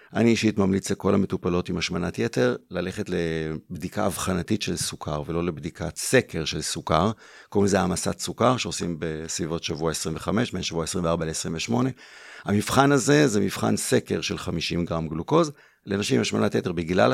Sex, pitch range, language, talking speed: male, 85-110 Hz, Hebrew, 155 wpm